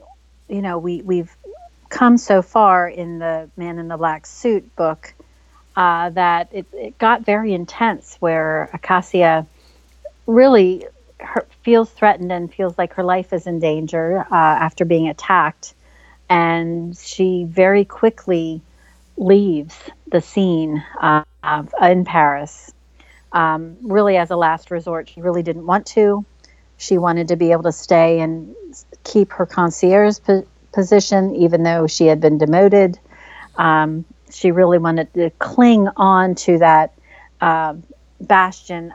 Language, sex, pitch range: English, female, 155-190 Hz